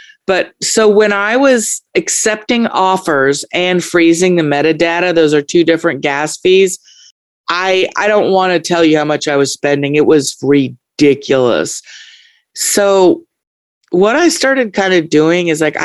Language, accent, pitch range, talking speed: English, American, 150-200 Hz, 155 wpm